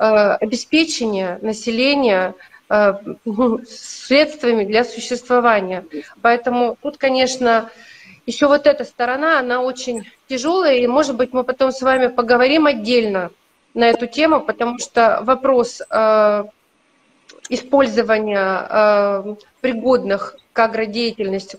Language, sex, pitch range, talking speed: Russian, female, 225-275 Hz, 95 wpm